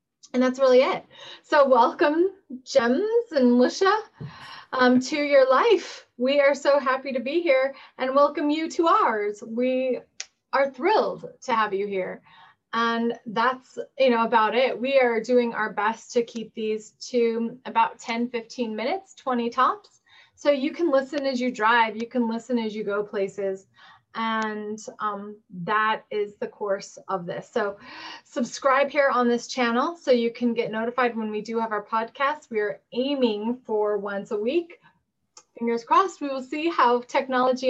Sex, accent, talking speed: female, American, 170 wpm